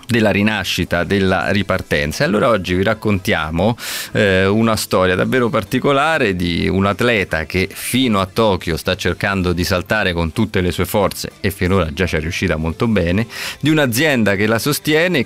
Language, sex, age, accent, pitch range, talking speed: Italian, male, 30-49, native, 95-120 Hz, 165 wpm